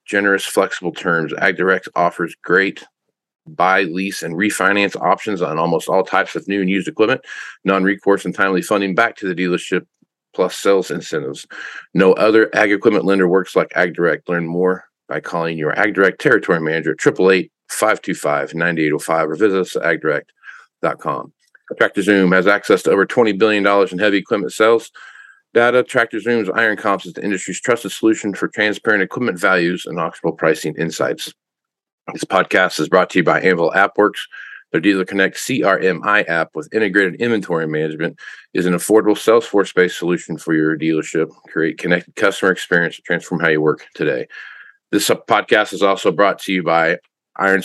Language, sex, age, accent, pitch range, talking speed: English, male, 40-59, American, 85-105 Hz, 165 wpm